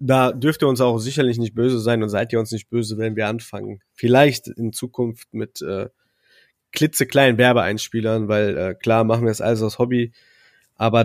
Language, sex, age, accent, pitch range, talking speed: German, male, 20-39, German, 115-125 Hz, 190 wpm